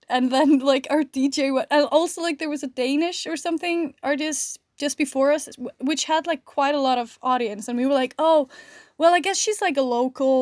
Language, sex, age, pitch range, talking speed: Danish, female, 10-29, 250-300 Hz, 225 wpm